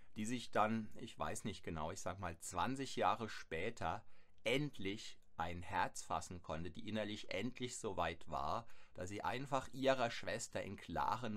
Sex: male